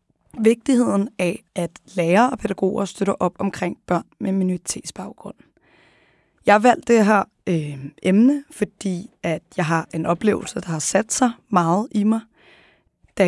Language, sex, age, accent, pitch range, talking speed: Danish, female, 20-39, native, 175-210 Hz, 145 wpm